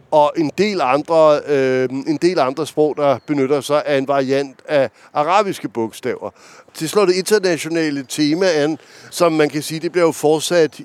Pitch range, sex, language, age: 150-185 Hz, male, Danish, 60-79